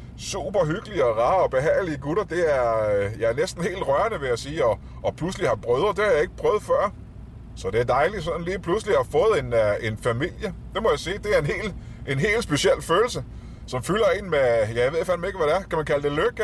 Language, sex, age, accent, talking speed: Danish, male, 30-49, native, 265 wpm